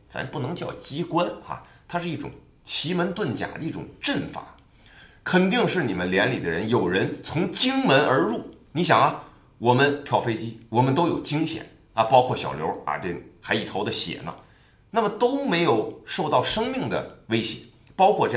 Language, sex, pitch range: Chinese, male, 115-185 Hz